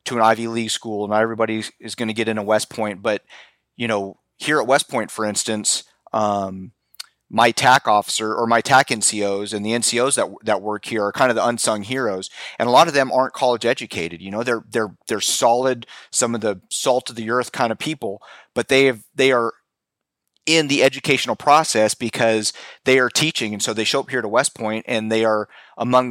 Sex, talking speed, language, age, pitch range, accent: male, 215 wpm, English, 30-49, 110-125 Hz, American